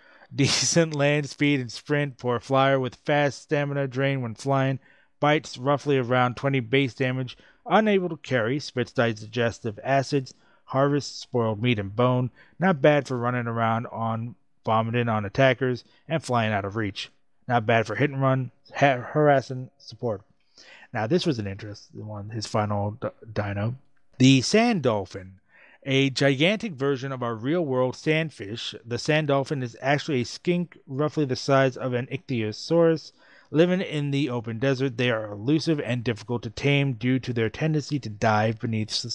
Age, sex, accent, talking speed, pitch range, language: 30-49, male, American, 165 wpm, 115-145 Hz, English